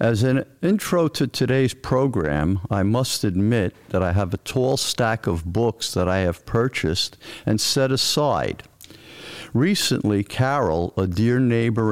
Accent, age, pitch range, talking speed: American, 50-69, 100-120 Hz, 145 wpm